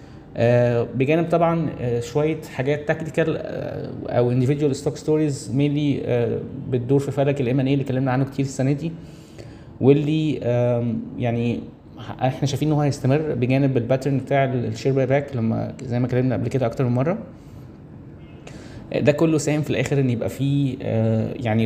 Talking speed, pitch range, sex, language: 145 wpm, 120-145 Hz, male, Arabic